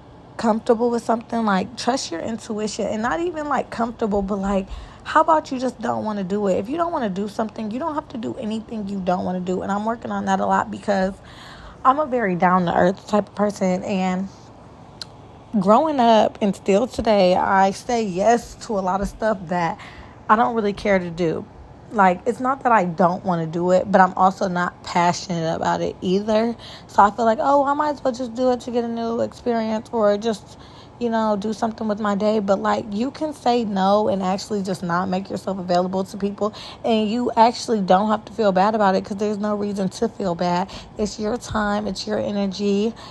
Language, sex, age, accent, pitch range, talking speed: English, female, 20-39, American, 190-230 Hz, 220 wpm